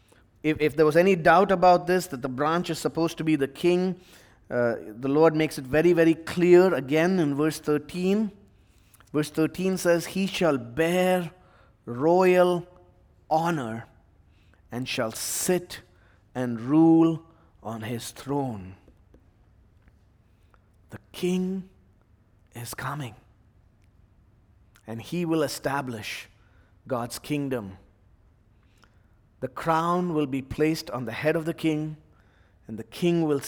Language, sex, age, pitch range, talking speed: English, male, 30-49, 105-165 Hz, 125 wpm